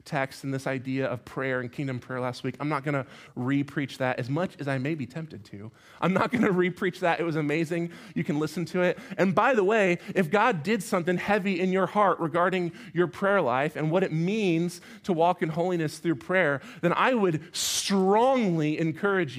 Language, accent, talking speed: English, American, 210 wpm